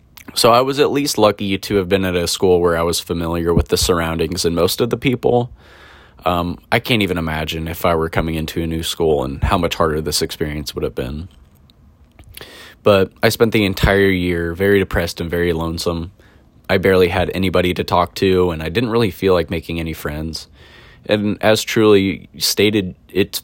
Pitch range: 85-100 Hz